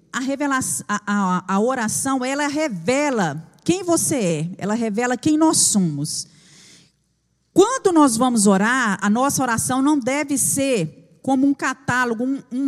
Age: 40-59